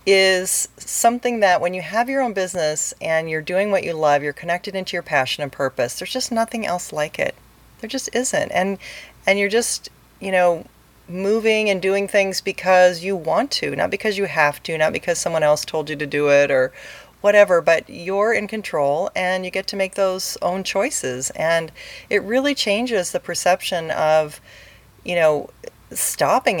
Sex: female